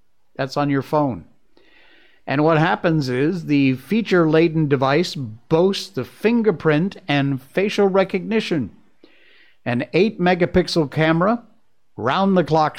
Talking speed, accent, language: 100 wpm, American, English